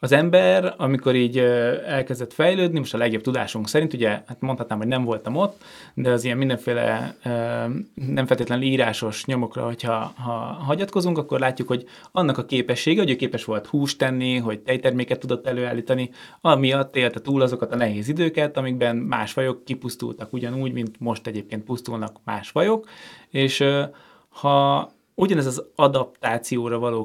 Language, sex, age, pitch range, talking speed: Hungarian, male, 20-39, 120-140 Hz, 155 wpm